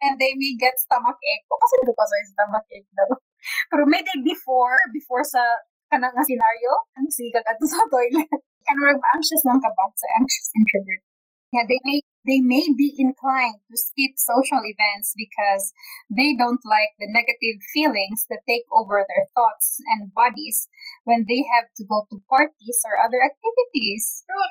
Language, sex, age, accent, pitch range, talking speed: English, female, 20-39, Filipino, 225-295 Hz, 155 wpm